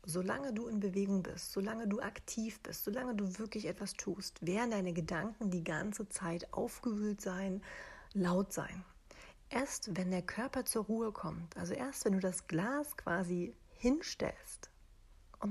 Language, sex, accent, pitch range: German, female, German, 180-230 Hz